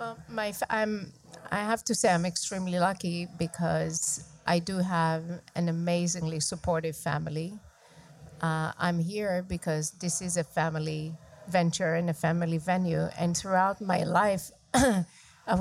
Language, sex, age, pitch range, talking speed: English, female, 50-69, 165-185 Hz, 140 wpm